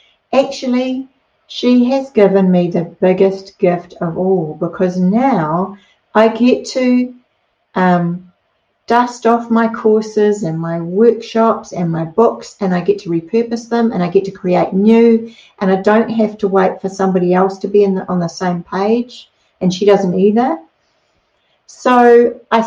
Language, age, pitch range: English, 60-79, 185-245 Hz